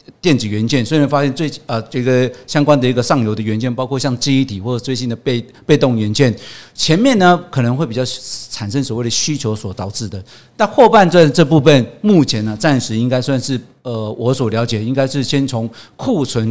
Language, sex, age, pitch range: Chinese, male, 50-69, 115-140 Hz